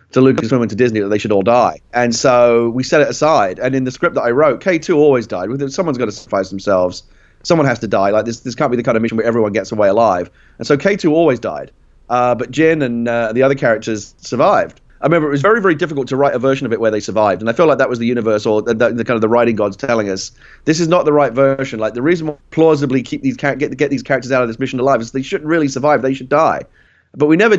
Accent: British